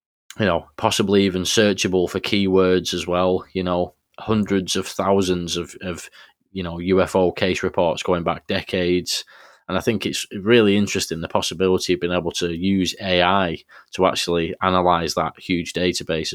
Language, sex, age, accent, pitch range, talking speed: English, male, 20-39, British, 85-95 Hz, 175 wpm